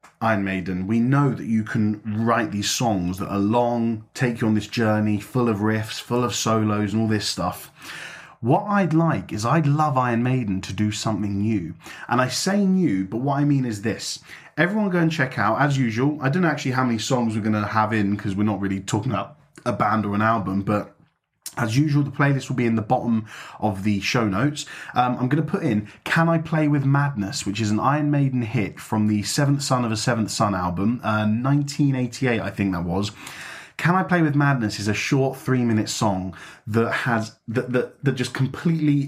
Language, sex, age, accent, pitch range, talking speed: English, male, 20-39, British, 105-140 Hz, 220 wpm